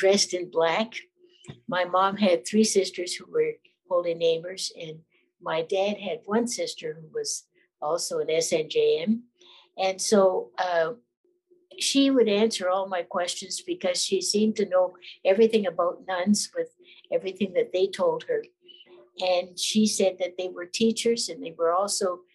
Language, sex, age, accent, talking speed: English, female, 60-79, American, 155 wpm